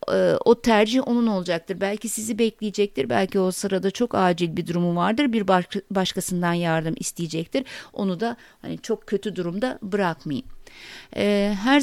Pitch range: 185-230 Hz